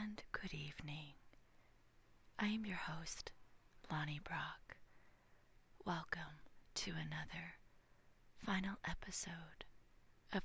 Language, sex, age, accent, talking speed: English, female, 30-49, American, 85 wpm